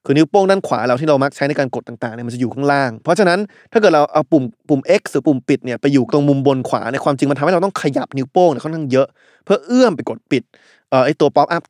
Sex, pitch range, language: male, 130-170 Hz, Thai